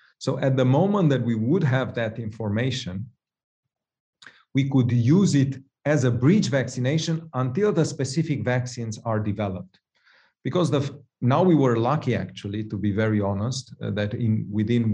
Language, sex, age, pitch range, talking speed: English, male, 40-59, 110-135 Hz, 155 wpm